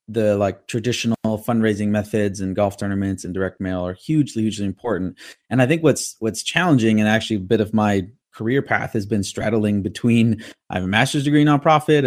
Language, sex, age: English, male, 30-49